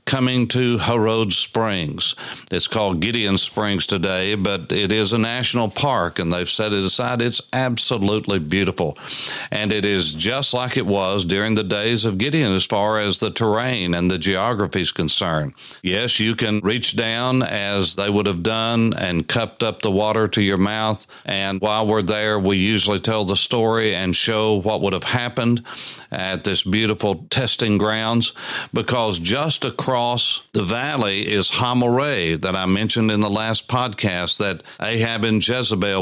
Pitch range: 95-115 Hz